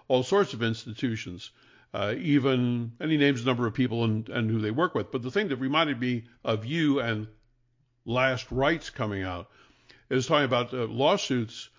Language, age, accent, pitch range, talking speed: English, 60-79, American, 115-135 Hz, 180 wpm